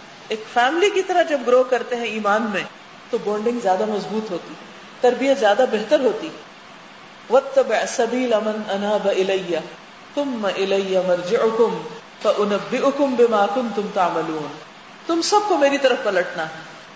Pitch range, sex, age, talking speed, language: 220-315 Hz, female, 40-59, 110 wpm, Urdu